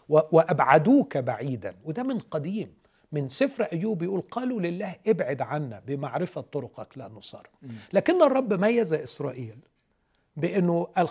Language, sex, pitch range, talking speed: Arabic, male, 130-180 Hz, 125 wpm